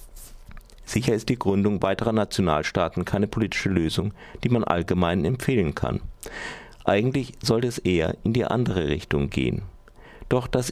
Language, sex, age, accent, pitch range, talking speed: German, male, 50-69, German, 95-115 Hz, 140 wpm